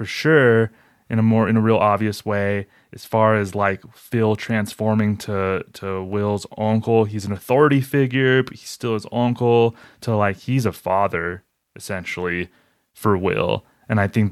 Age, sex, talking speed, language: 20-39, male, 170 wpm, English